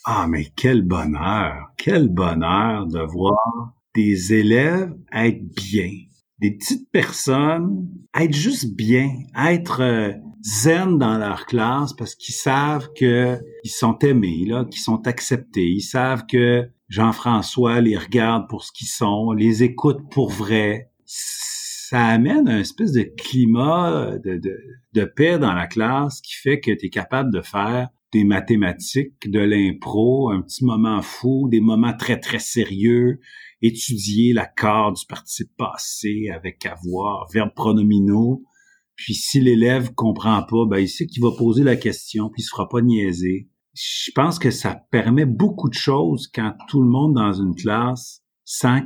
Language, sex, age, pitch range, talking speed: French, male, 50-69, 105-130 Hz, 155 wpm